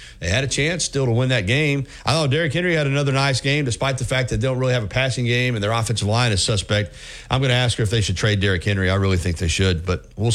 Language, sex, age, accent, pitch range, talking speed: English, male, 40-59, American, 110-140 Hz, 300 wpm